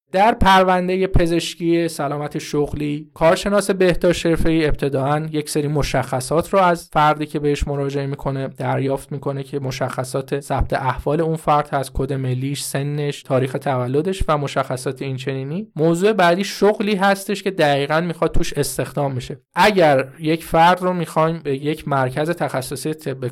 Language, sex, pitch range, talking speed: Persian, male, 135-170 Hz, 145 wpm